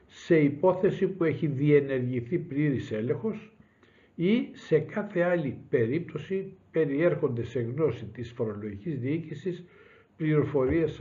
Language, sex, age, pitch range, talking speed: Greek, male, 60-79, 120-160 Hz, 105 wpm